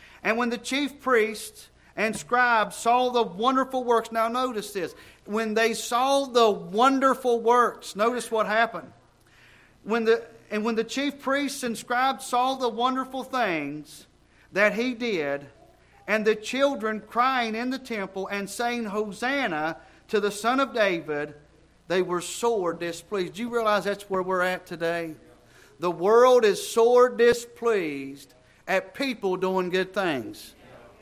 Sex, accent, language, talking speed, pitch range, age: male, American, English, 145 wpm, 185-240 Hz, 40-59